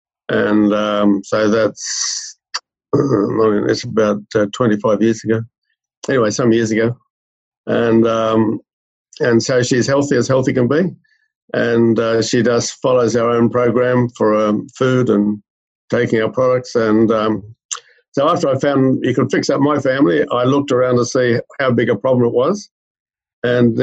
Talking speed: 160 wpm